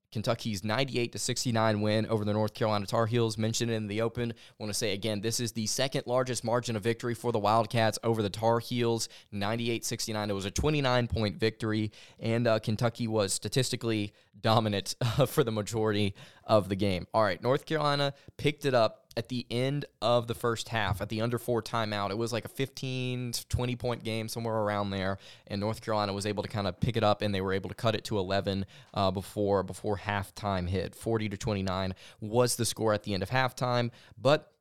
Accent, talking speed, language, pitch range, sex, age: American, 210 wpm, English, 105-120 Hz, male, 20-39